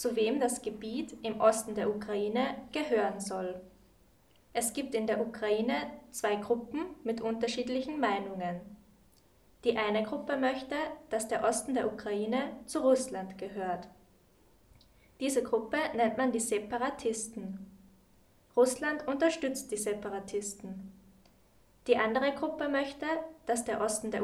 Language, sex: German, female